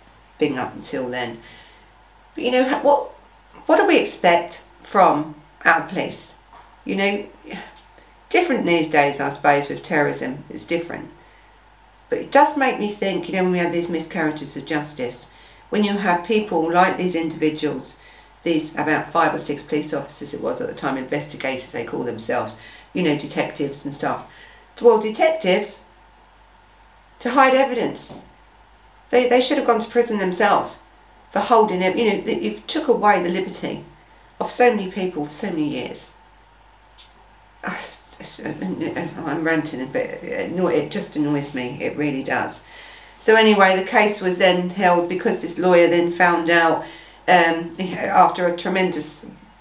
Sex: female